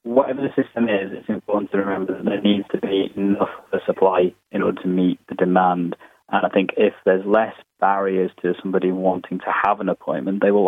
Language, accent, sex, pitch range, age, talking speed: English, British, male, 90-100 Hz, 20-39, 220 wpm